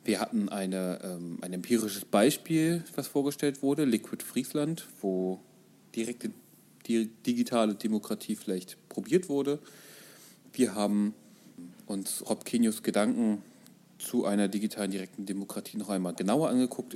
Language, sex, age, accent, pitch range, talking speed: German, male, 30-49, German, 95-140 Hz, 120 wpm